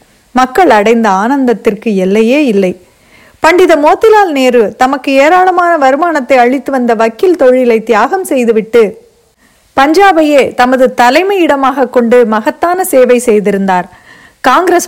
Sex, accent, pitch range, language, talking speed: female, native, 225-300 Hz, Tamil, 95 wpm